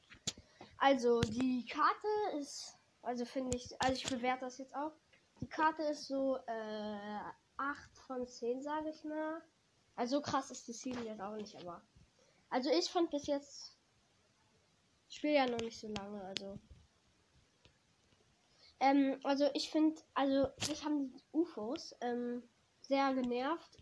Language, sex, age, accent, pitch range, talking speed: German, female, 10-29, German, 240-285 Hz, 145 wpm